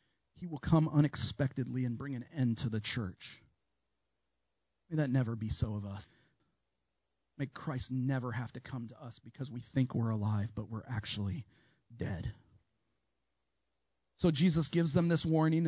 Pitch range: 120-155 Hz